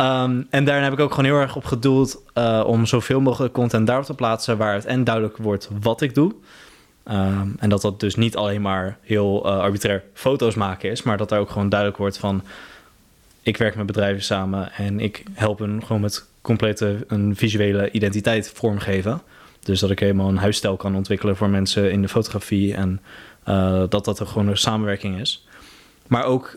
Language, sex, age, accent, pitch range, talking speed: Dutch, male, 20-39, Dutch, 100-115 Hz, 200 wpm